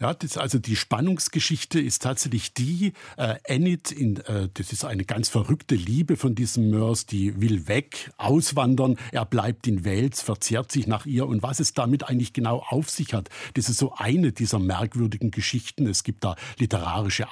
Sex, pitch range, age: male, 110-135 Hz, 60-79